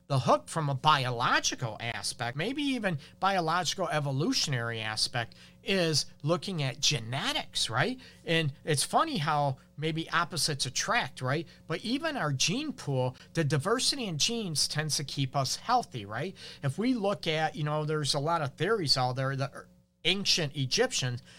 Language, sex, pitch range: English, male, 135-170 Hz